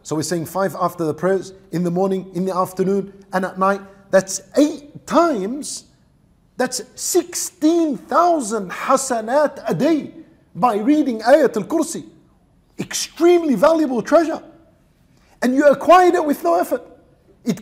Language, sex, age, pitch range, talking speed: English, male, 50-69, 195-305 Hz, 135 wpm